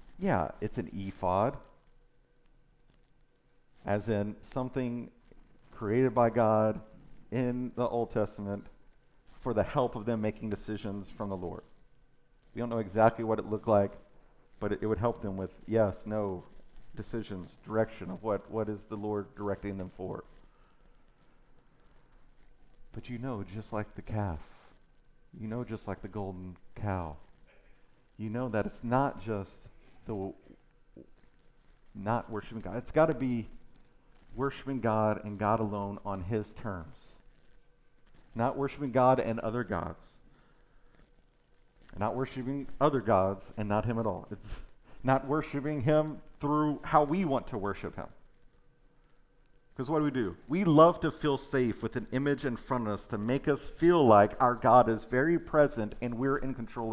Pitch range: 100-130 Hz